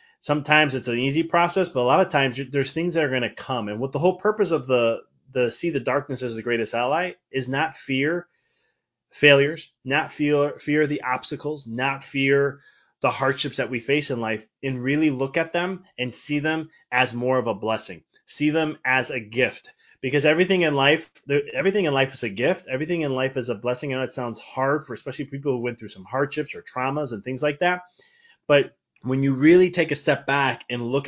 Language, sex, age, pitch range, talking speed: English, male, 20-39, 125-160 Hz, 215 wpm